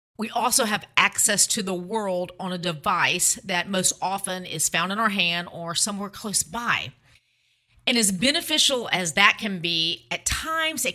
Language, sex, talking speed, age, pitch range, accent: English, female, 175 wpm, 40-59, 165-210 Hz, American